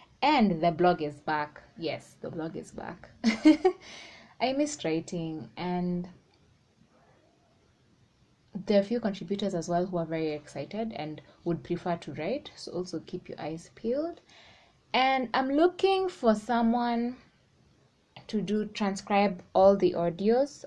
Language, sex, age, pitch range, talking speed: English, female, 20-39, 170-215 Hz, 135 wpm